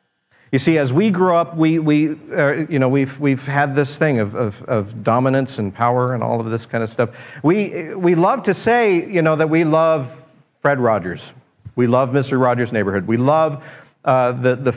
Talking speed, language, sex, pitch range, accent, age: 205 wpm, English, male, 115-155 Hz, American, 50-69